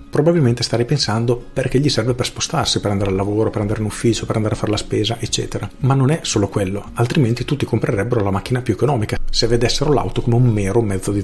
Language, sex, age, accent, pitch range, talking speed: Italian, male, 40-59, native, 110-130 Hz, 230 wpm